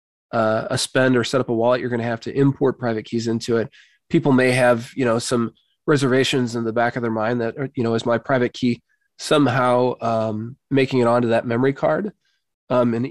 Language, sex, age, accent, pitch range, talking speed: English, male, 20-39, American, 120-135 Hz, 220 wpm